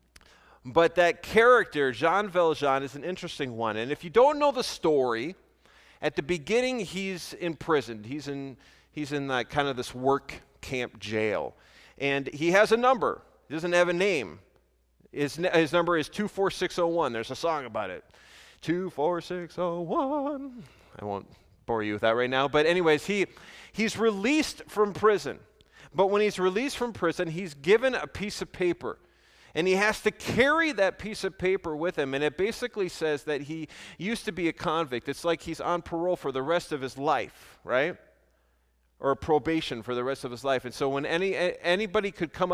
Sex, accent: male, American